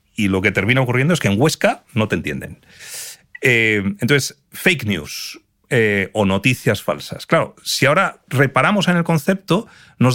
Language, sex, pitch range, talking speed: Spanish, male, 115-170 Hz, 165 wpm